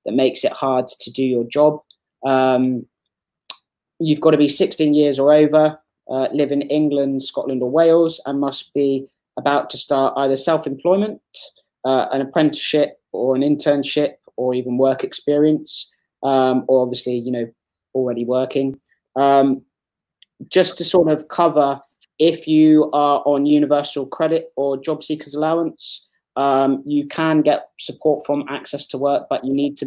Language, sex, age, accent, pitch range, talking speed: English, male, 20-39, British, 130-150 Hz, 155 wpm